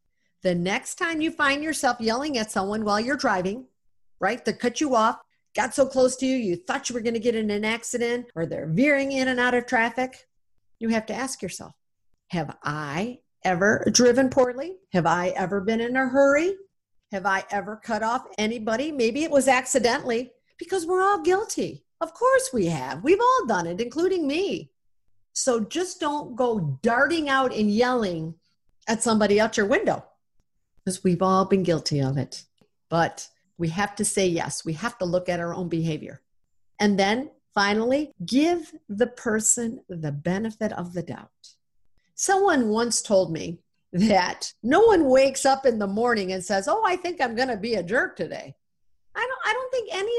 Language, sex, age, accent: English, female, 50-69, American